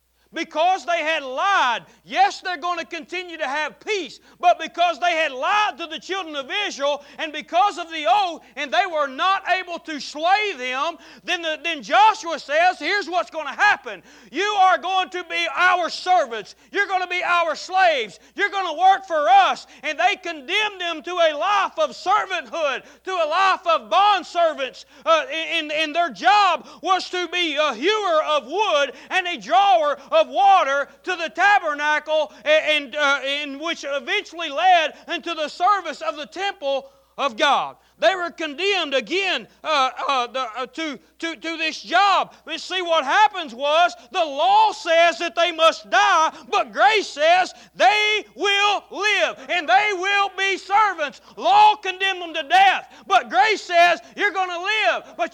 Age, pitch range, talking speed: 40-59, 305-380 Hz, 175 wpm